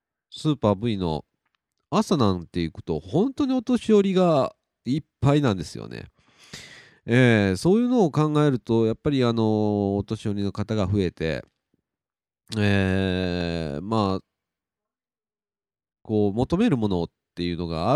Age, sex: 40-59, male